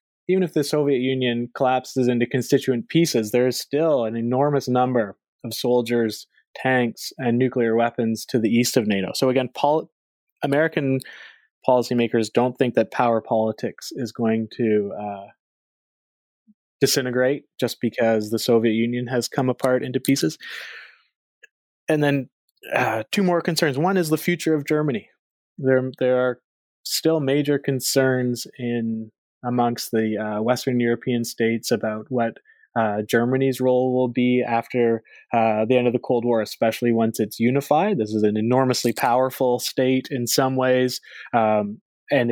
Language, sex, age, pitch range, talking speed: English, male, 20-39, 115-135 Hz, 150 wpm